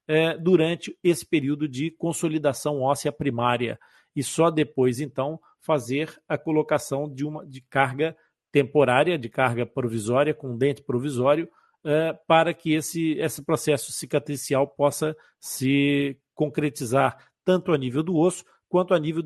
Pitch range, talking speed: 140-170 Hz, 130 wpm